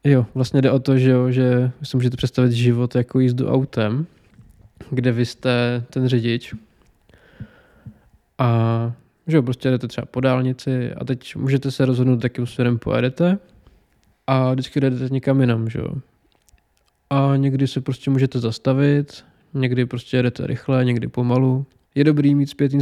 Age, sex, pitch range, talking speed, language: 20-39, male, 125-135 Hz, 155 wpm, Czech